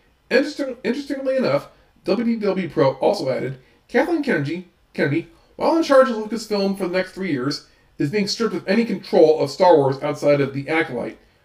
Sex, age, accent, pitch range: male, 40-59, American, 140-195 Hz